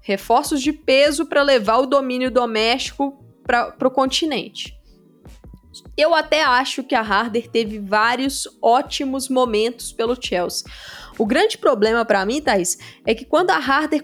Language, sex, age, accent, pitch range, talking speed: Portuguese, female, 20-39, Brazilian, 225-290 Hz, 145 wpm